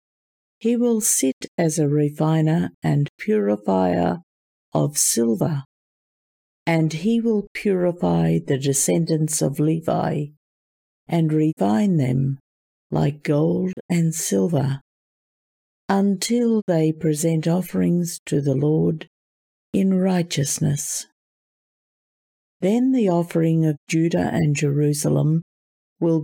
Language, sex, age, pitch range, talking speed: English, female, 50-69, 135-180 Hz, 95 wpm